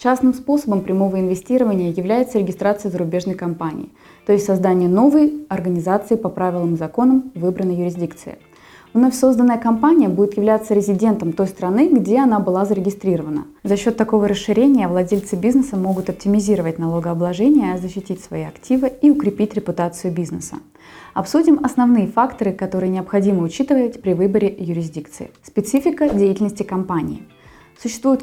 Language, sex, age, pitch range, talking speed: Russian, female, 20-39, 170-230 Hz, 130 wpm